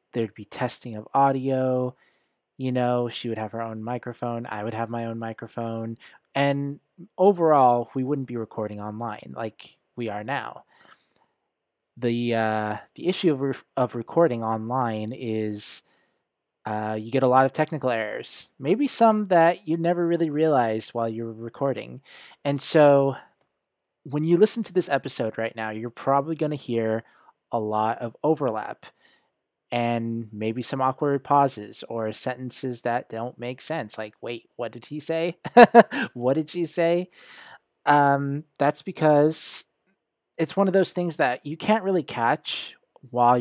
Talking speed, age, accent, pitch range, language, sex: 155 wpm, 20-39, American, 115-150 Hz, English, male